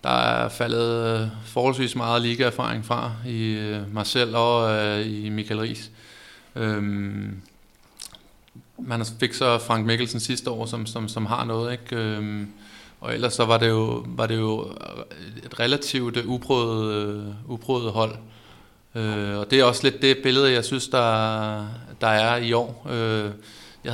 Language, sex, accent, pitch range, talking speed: Danish, male, native, 110-125 Hz, 140 wpm